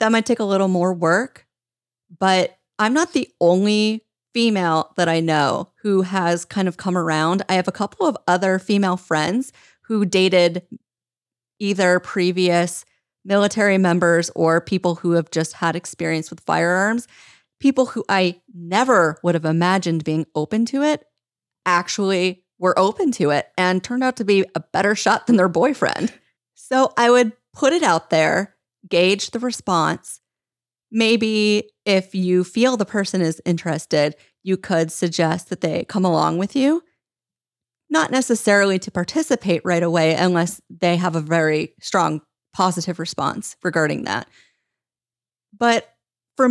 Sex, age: female, 30-49